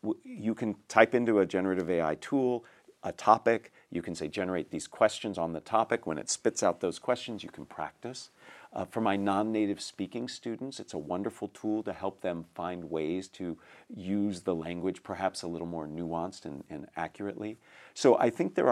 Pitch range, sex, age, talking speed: 85-105 Hz, male, 50-69, 190 wpm